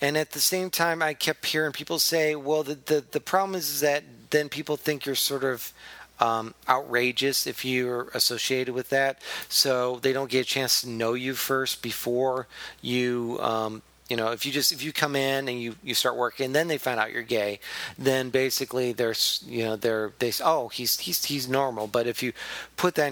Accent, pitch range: American, 115-150 Hz